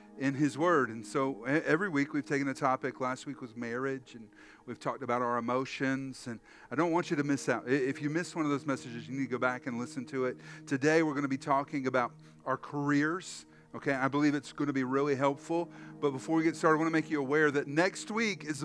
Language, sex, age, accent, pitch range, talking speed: English, male, 40-59, American, 140-170 Hz, 250 wpm